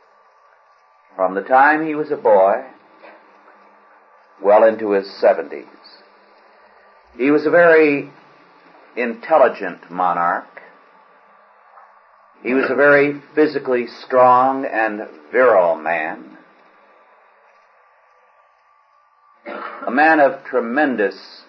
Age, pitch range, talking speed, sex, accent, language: 50-69, 100-145 Hz, 85 wpm, male, American, English